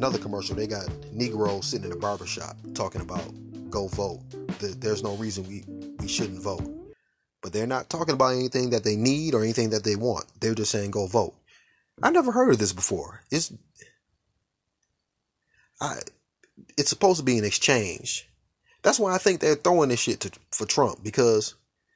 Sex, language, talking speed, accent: male, English, 180 wpm, American